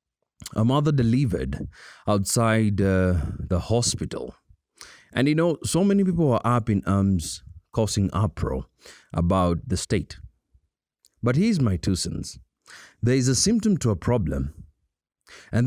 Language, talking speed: English, 135 wpm